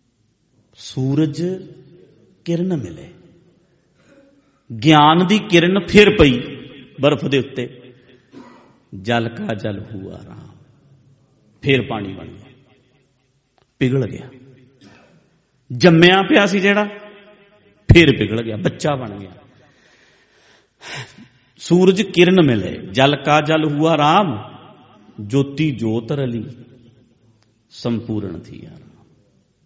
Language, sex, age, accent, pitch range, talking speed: English, male, 50-69, Indian, 120-155 Hz, 85 wpm